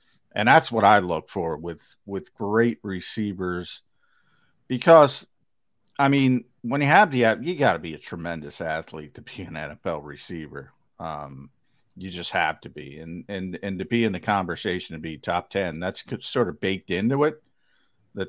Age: 50-69